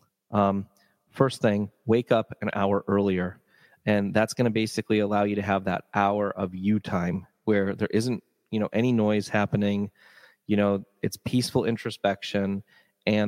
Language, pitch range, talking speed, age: English, 100-115 Hz, 165 wpm, 30-49